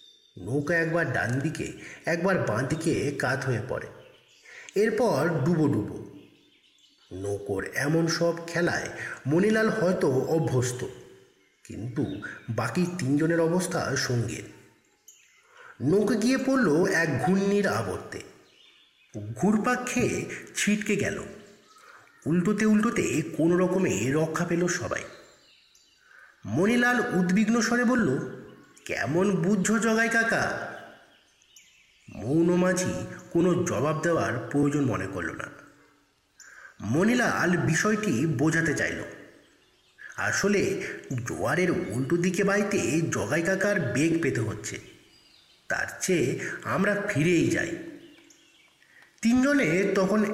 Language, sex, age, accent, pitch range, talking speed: Bengali, male, 50-69, native, 150-215 Hz, 95 wpm